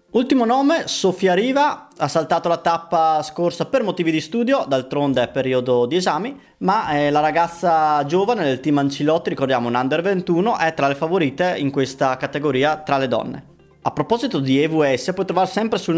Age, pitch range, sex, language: 20-39, 140-185 Hz, male, Italian